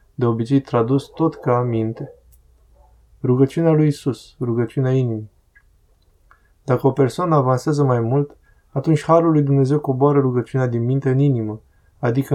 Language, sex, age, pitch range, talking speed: Romanian, male, 20-39, 115-140 Hz, 135 wpm